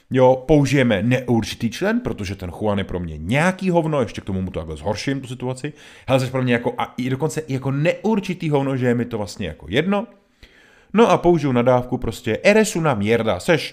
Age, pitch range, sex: 30-49, 90-135 Hz, male